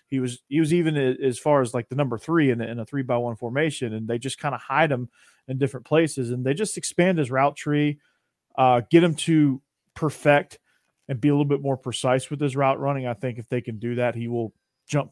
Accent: American